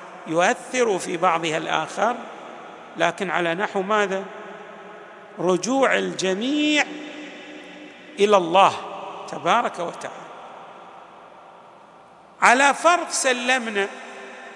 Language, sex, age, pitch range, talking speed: Arabic, male, 50-69, 195-250 Hz, 70 wpm